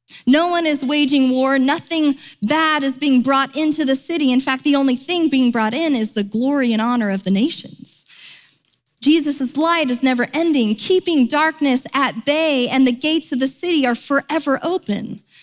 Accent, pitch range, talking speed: American, 200-280 Hz, 185 wpm